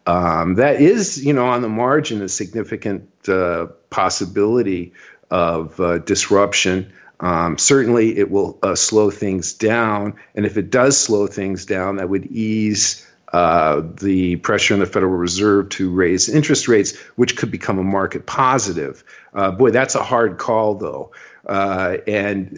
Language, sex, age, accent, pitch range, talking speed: English, male, 50-69, American, 95-110 Hz, 155 wpm